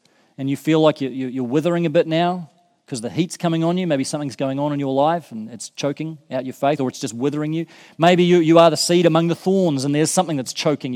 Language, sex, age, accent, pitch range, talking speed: English, male, 40-59, Australian, 150-190 Hz, 250 wpm